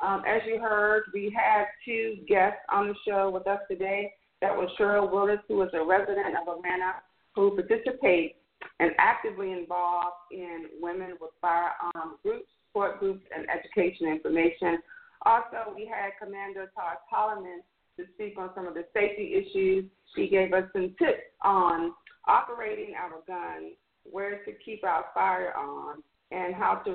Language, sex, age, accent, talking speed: English, female, 40-59, American, 155 wpm